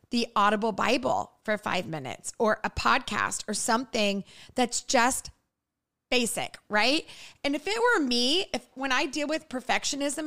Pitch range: 205-270 Hz